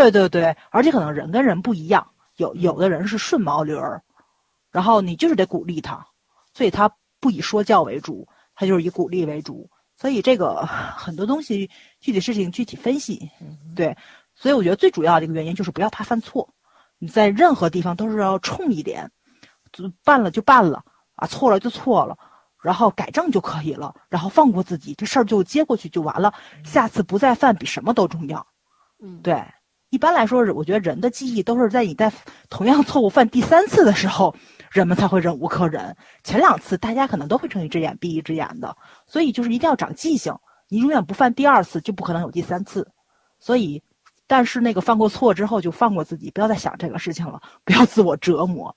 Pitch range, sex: 170-240 Hz, female